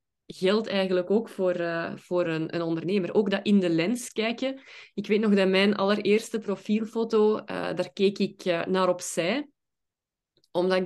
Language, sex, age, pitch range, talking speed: Dutch, female, 20-39, 180-220 Hz, 170 wpm